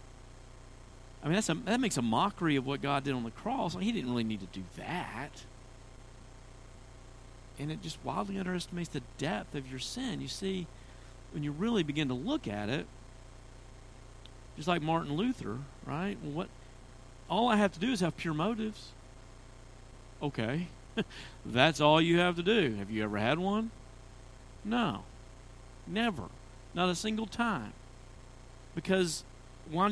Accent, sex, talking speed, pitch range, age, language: American, male, 155 wpm, 120-150 Hz, 50-69, English